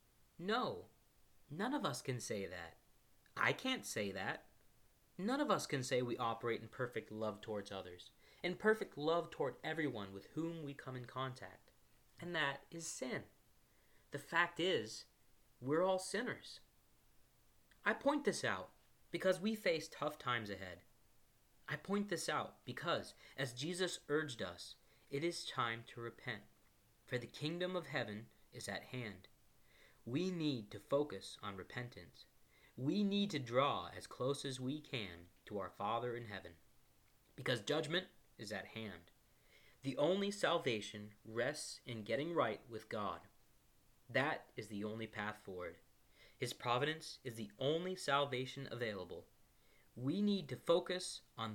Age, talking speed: 30-49, 150 wpm